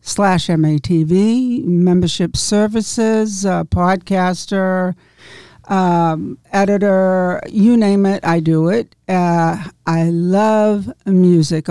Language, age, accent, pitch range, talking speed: English, 60-79, American, 165-200 Hz, 90 wpm